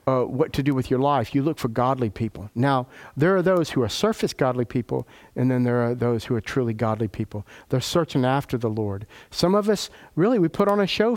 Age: 50-69